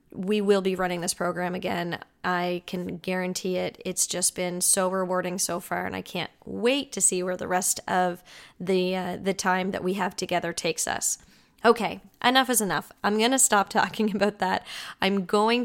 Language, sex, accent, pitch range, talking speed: English, female, American, 185-215 Hz, 195 wpm